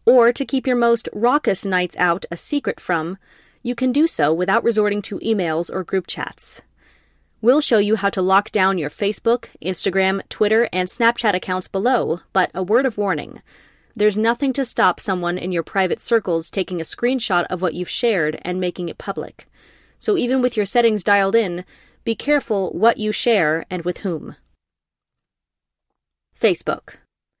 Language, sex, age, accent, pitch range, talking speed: English, female, 30-49, American, 185-235 Hz, 170 wpm